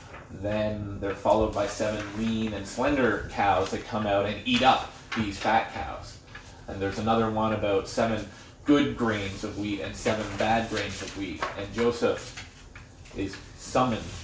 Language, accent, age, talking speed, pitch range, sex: English, American, 30-49, 160 wpm, 100-120 Hz, male